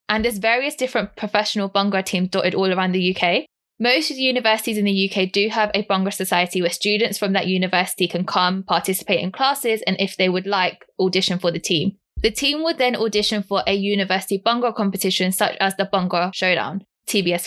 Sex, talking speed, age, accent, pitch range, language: female, 205 wpm, 10-29, British, 185-220 Hz, English